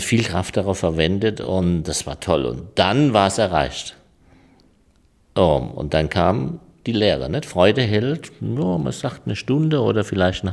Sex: male